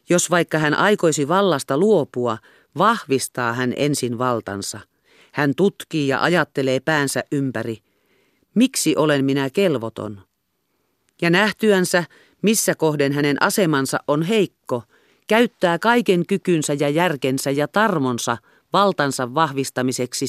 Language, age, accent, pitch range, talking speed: Finnish, 40-59, native, 135-180 Hz, 110 wpm